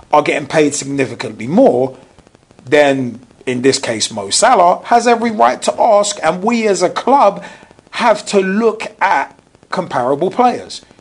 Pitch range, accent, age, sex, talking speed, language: 135-205 Hz, British, 40-59, male, 145 wpm, English